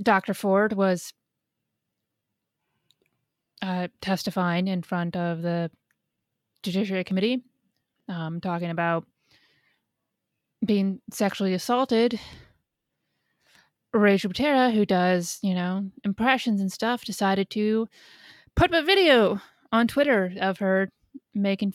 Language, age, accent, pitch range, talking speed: English, 30-49, American, 190-225 Hz, 100 wpm